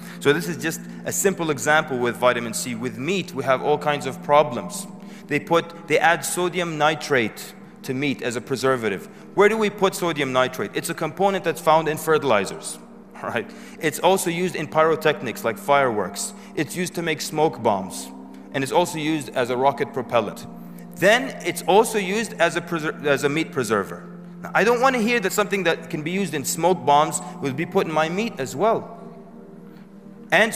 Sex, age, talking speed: male, 30-49, 195 wpm